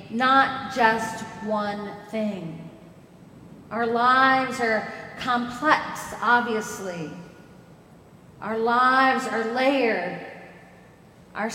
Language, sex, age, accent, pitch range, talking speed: English, female, 40-59, American, 195-255 Hz, 75 wpm